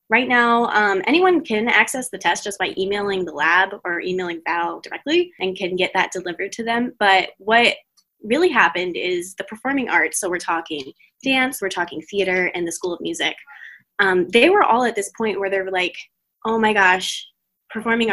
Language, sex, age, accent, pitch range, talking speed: English, female, 10-29, American, 180-230 Hz, 195 wpm